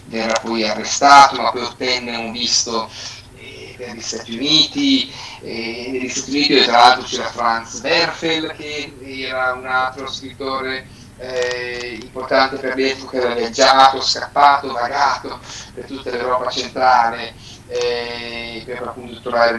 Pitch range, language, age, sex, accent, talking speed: 115-140 Hz, Italian, 30-49, male, native, 140 wpm